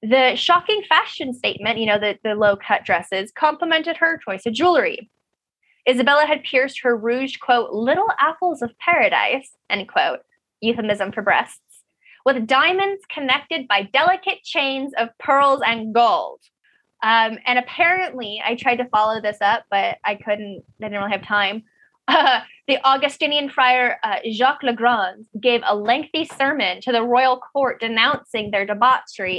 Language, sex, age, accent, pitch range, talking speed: English, female, 10-29, American, 220-290 Hz, 155 wpm